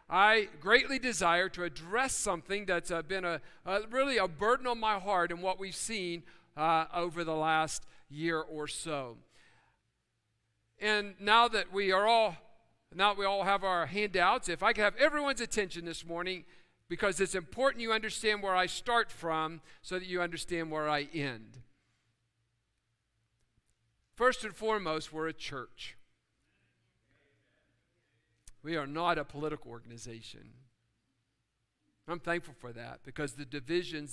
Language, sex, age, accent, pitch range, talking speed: English, male, 50-69, American, 135-190 Hz, 145 wpm